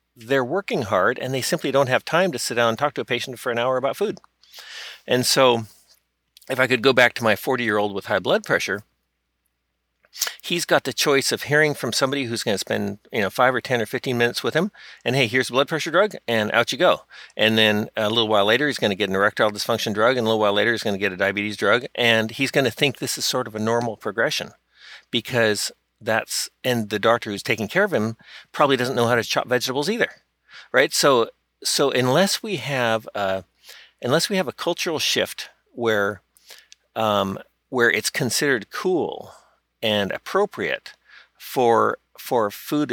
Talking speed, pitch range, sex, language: 210 wpm, 105-135 Hz, male, English